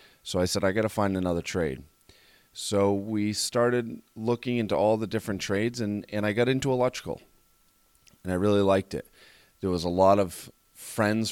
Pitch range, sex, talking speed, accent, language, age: 95-110 Hz, male, 185 wpm, American, English, 30-49